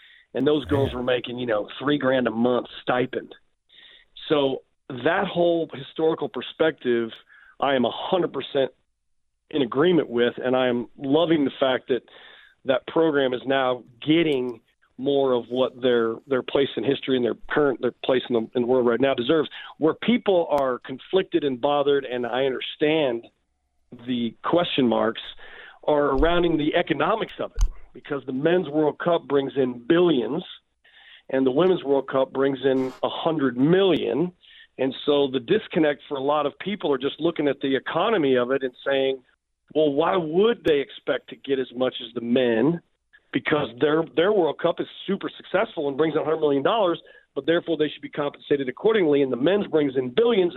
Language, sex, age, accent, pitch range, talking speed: English, male, 40-59, American, 125-165 Hz, 175 wpm